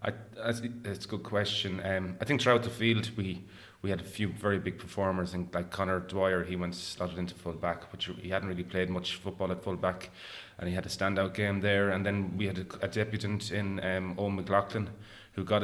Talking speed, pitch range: 220 wpm, 90-100 Hz